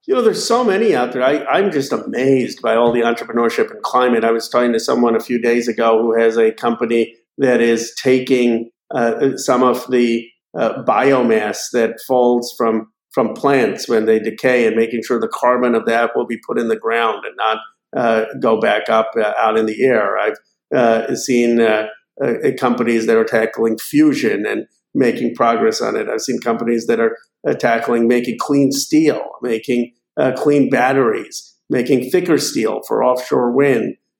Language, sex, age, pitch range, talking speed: English, male, 50-69, 115-125 Hz, 180 wpm